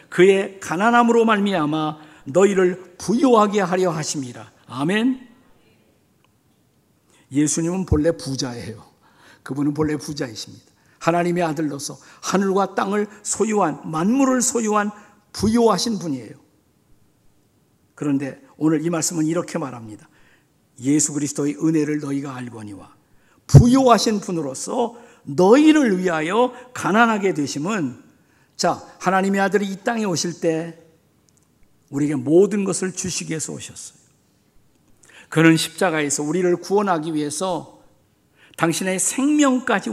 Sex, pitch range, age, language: male, 150-205 Hz, 50-69, Korean